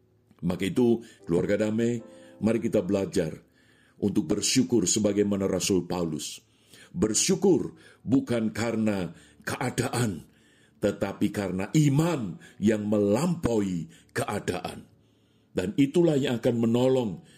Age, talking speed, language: 50-69, 95 wpm, Indonesian